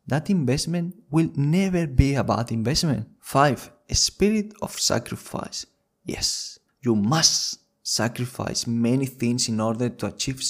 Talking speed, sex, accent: 130 wpm, male, Spanish